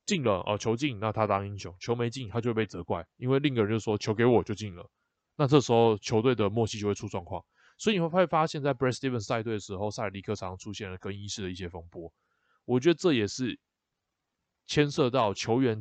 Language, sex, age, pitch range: Chinese, male, 20-39, 100-125 Hz